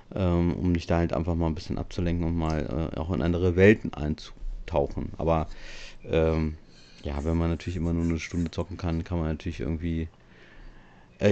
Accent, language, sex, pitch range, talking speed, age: German, German, male, 85-115 Hz, 185 wpm, 40-59